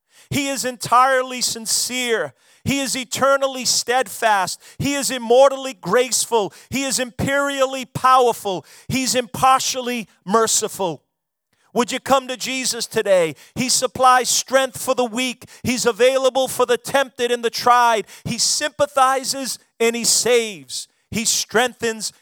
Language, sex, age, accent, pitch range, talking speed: English, male, 40-59, American, 205-255 Hz, 125 wpm